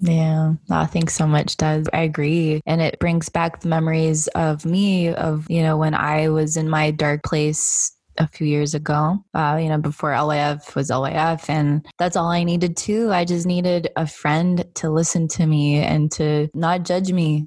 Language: English